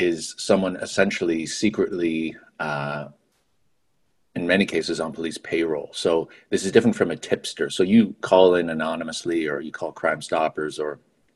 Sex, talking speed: male, 155 wpm